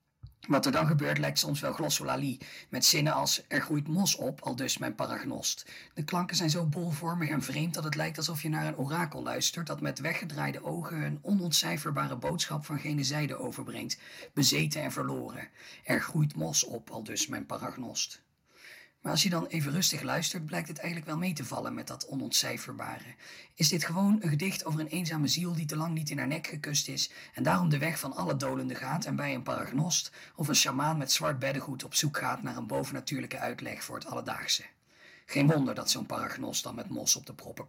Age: 40-59